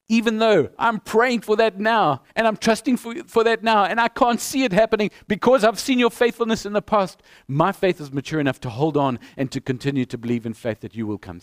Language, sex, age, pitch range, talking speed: English, male, 50-69, 115-170 Hz, 245 wpm